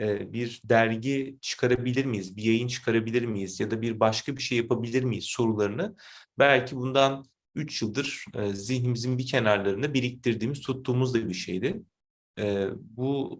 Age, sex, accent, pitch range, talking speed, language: 30-49, male, native, 105-125 Hz, 135 wpm, Turkish